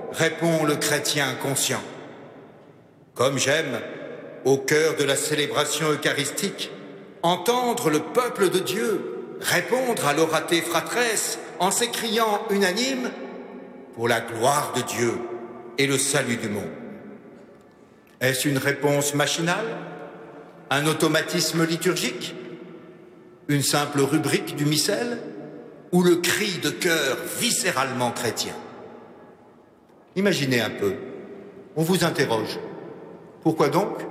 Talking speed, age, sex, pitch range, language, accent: 105 wpm, 60-79, male, 140-175 Hz, French, French